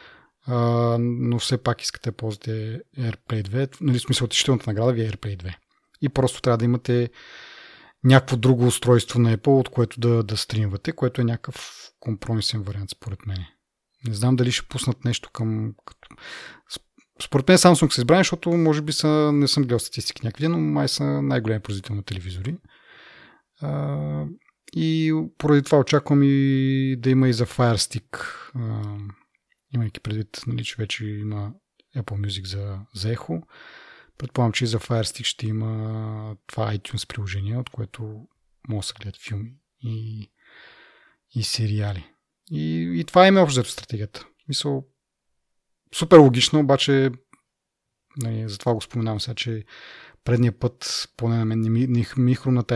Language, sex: Bulgarian, male